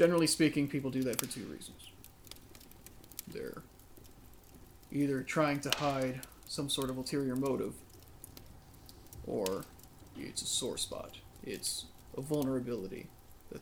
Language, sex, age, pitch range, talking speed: English, male, 30-49, 85-135 Hz, 120 wpm